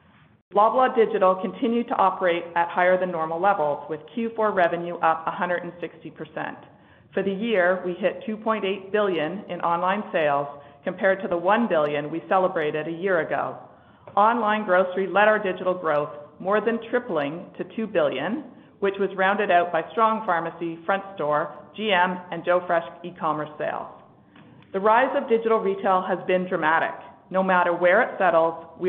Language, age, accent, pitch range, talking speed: English, 50-69, American, 170-200 Hz, 160 wpm